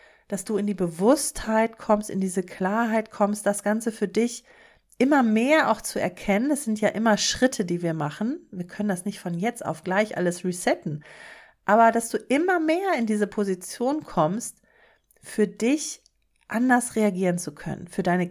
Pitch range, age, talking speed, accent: 185-220 Hz, 40-59, 175 wpm, German